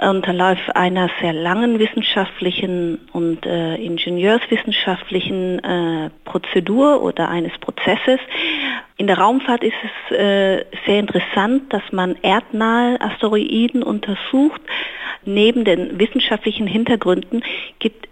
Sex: female